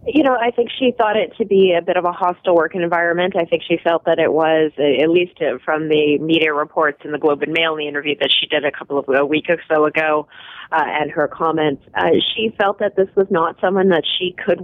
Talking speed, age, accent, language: 260 wpm, 30-49, American, English